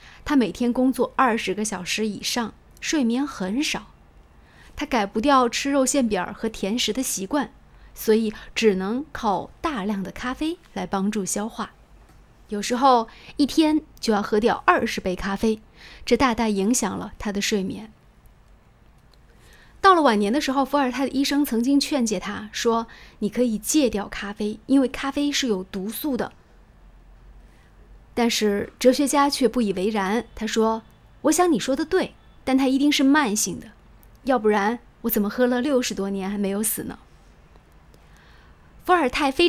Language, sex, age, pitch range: Chinese, female, 20-39, 205-270 Hz